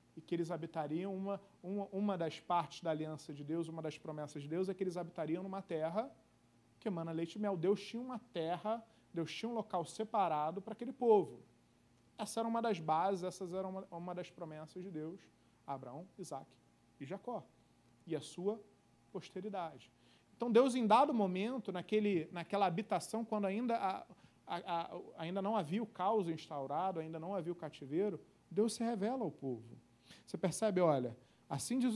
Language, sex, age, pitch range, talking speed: Portuguese, male, 40-59, 165-220 Hz, 180 wpm